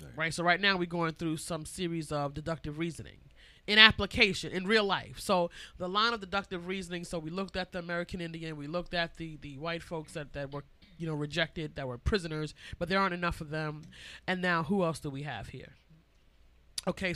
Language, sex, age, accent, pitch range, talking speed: English, male, 30-49, American, 155-195 Hz, 215 wpm